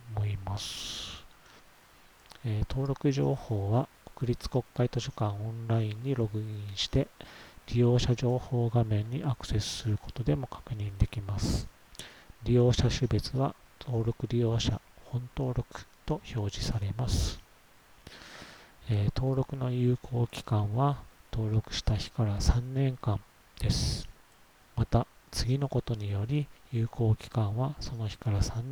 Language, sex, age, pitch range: Japanese, male, 40-59, 105-125 Hz